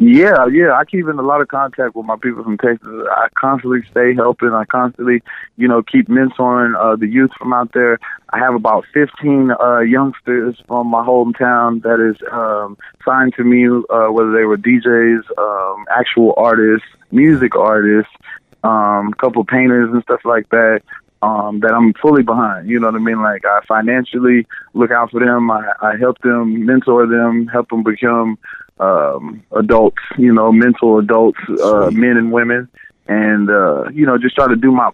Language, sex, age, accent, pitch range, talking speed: English, male, 20-39, American, 110-125 Hz, 185 wpm